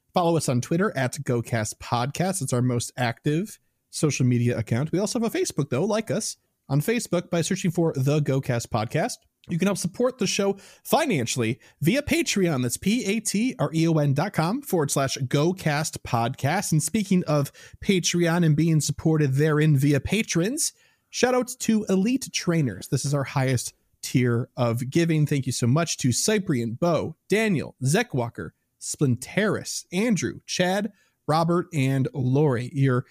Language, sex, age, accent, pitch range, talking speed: English, male, 30-49, American, 130-190 Hz, 150 wpm